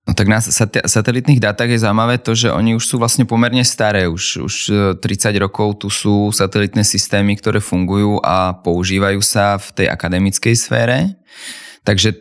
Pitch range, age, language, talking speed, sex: 90-105 Hz, 20-39, Czech, 160 wpm, male